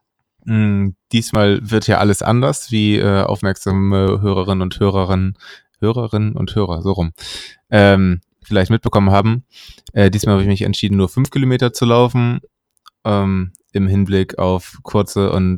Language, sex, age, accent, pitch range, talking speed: German, male, 20-39, German, 95-110 Hz, 145 wpm